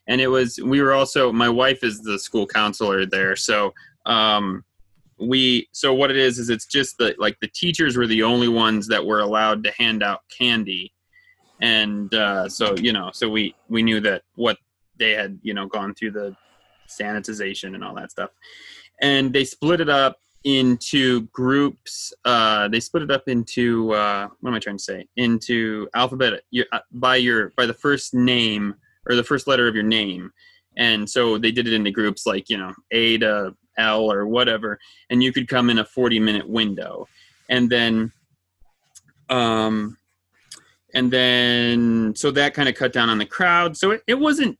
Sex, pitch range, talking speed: male, 110-135 Hz, 185 wpm